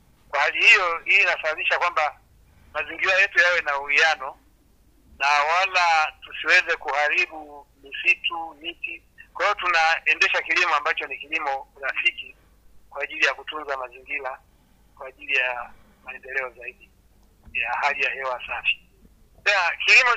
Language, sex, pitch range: Swahili, male, 135-165 Hz